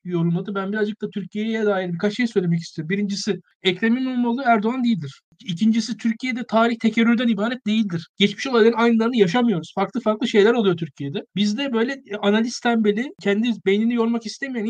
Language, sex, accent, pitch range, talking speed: Turkish, male, native, 200-240 Hz, 160 wpm